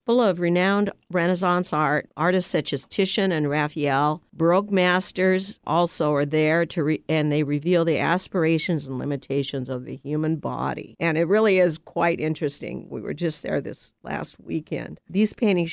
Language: English